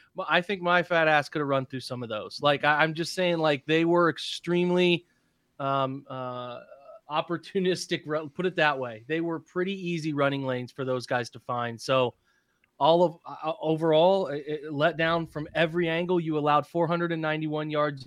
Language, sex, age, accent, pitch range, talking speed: English, male, 30-49, American, 130-160 Hz, 180 wpm